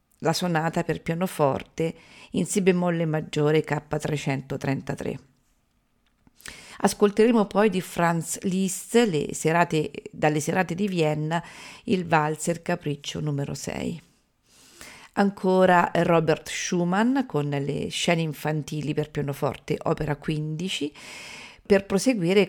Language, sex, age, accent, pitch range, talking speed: Italian, female, 50-69, native, 150-185 Hz, 100 wpm